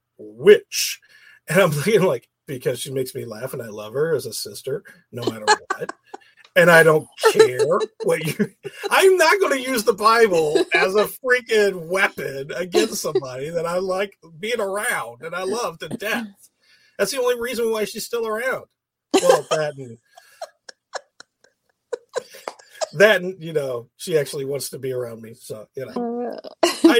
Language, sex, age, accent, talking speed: English, male, 40-59, American, 170 wpm